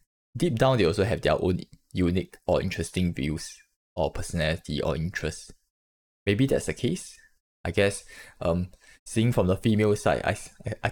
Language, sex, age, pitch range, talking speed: English, male, 10-29, 85-120 Hz, 160 wpm